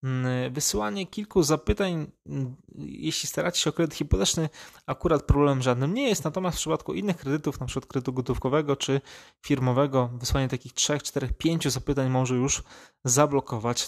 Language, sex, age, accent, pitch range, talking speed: Polish, male, 20-39, native, 125-155 Hz, 145 wpm